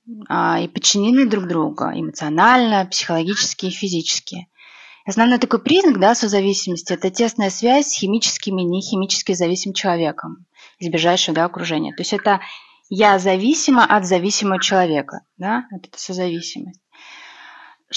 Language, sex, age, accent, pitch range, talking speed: Russian, female, 20-39, native, 190-235 Hz, 125 wpm